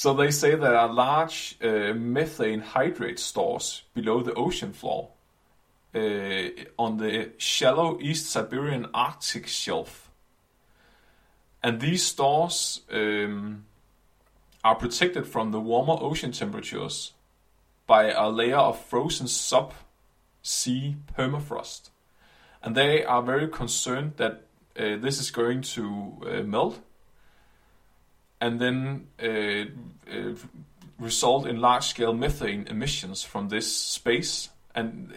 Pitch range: 115-145 Hz